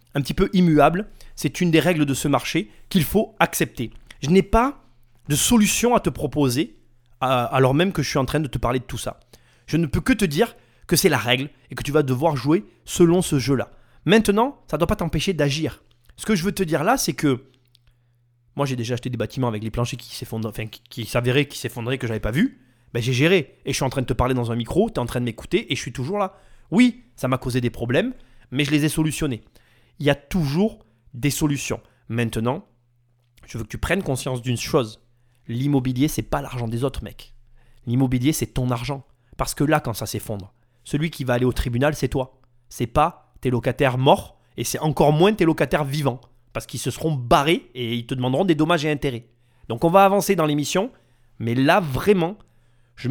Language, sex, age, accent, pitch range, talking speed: French, male, 20-39, French, 120-160 Hz, 230 wpm